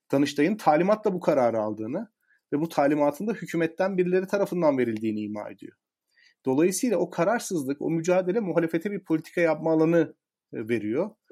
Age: 40-59